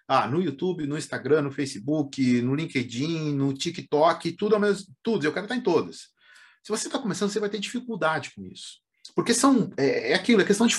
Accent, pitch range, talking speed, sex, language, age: Brazilian, 150-220 Hz, 210 wpm, male, Portuguese, 40-59